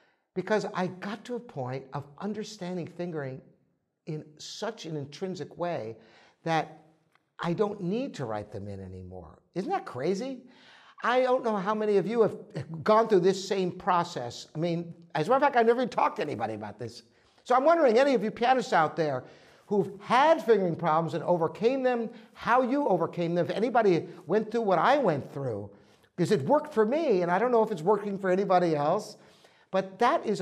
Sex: male